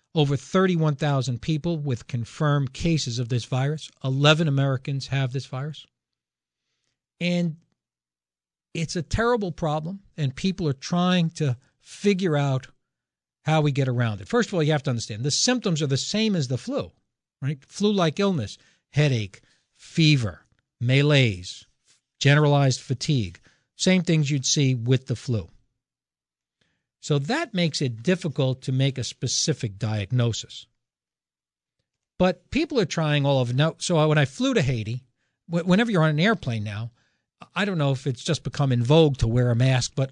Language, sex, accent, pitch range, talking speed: English, male, American, 125-160 Hz, 155 wpm